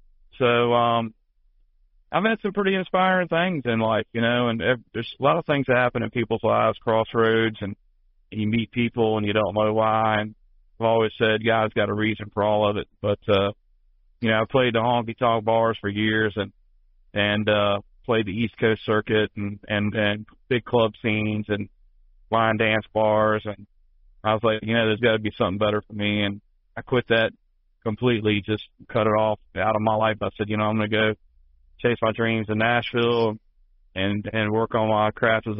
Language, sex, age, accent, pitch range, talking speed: English, male, 40-59, American, 105-115 Hz, 205 wpm